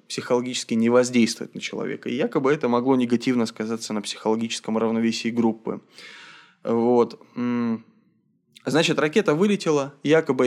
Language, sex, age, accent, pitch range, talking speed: Russian, male, 20-39, native, 110-130 Hz, 110 wpm